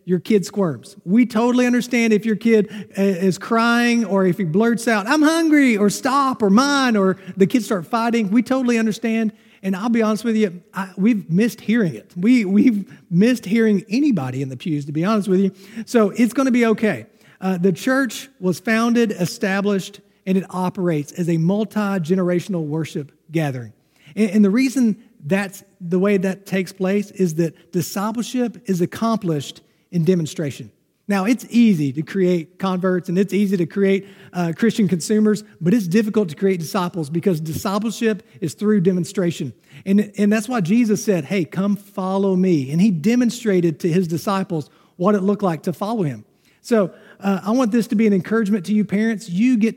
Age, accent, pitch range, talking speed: 40-59, American, 185-225 Hz, 185 wpm